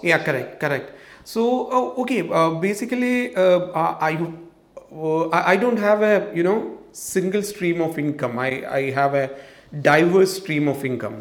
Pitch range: 140-175 Hz